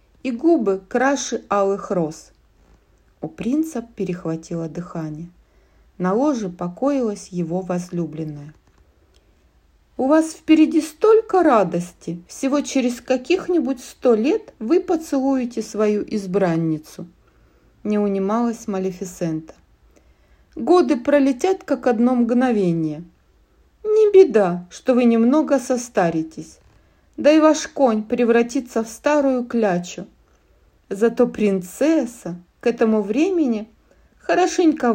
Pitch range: 175-270 Hz